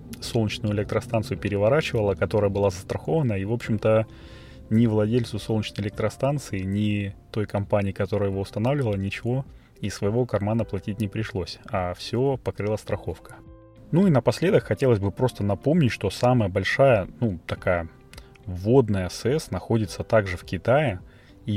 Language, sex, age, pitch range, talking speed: Russian, male, 20-39, 95-115 Hz, 135 wpm